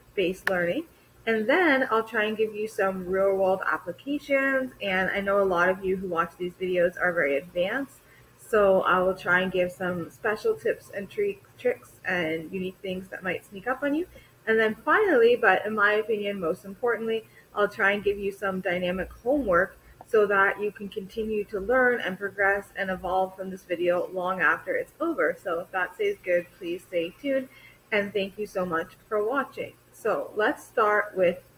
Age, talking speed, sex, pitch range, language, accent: 20-39, 195 wpm, female, 185-255 Hz, English, American